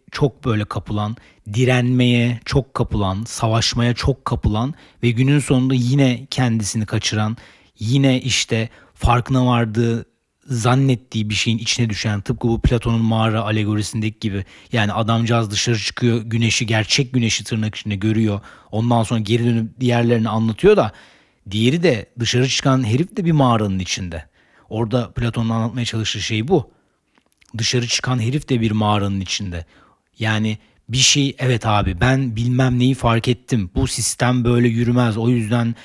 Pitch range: 110-130 Hz